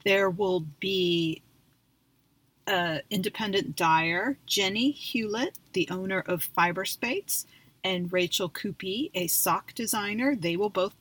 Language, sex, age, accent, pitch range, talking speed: English, female, 40-59, American, 170-200 Hz, 115 wpm